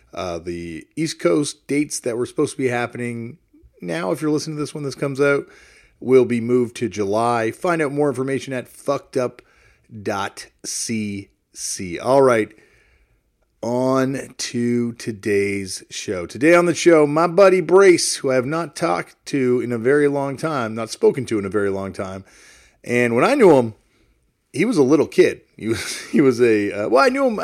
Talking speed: 185 wpm